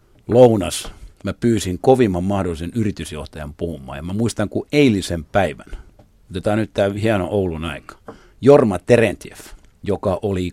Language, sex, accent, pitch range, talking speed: Finnish, male, native, 85-105 Hz, 125 wpm